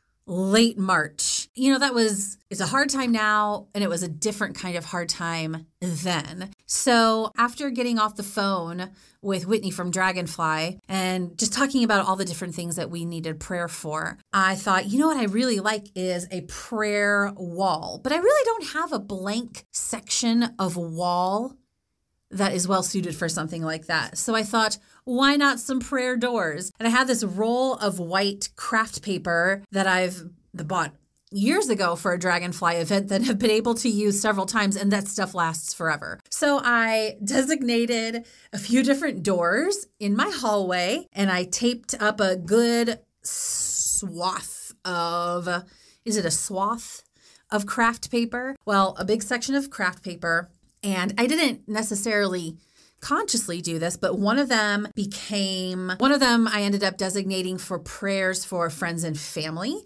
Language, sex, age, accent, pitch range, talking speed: English, female, 30-49, American, 180-235 Hz, 170 wpm